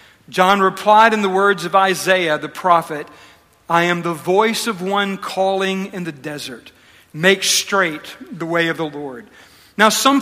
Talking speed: 165 wpm